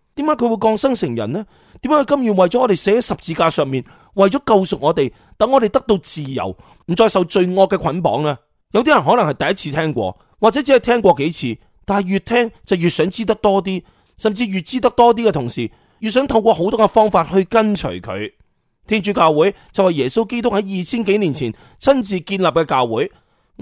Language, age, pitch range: Chinese, 30-49, 150-215 Hz